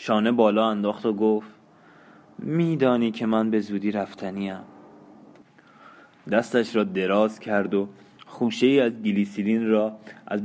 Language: Persian